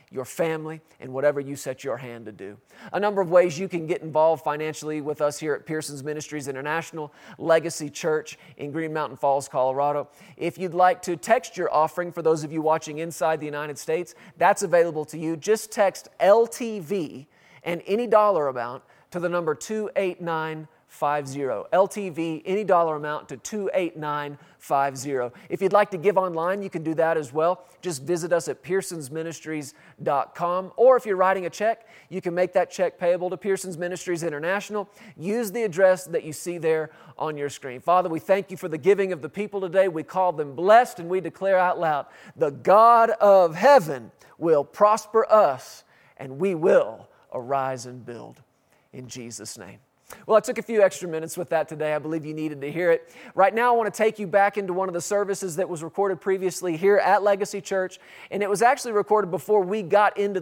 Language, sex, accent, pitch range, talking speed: English, male, American, 155-195 Hz, 195 wpm